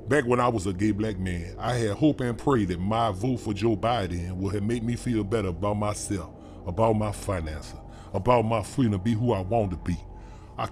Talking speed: 230 wpm